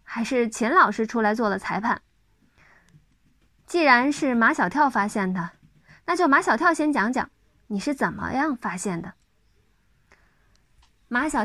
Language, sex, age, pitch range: Chinese, female, 20-39, 210-310 Hz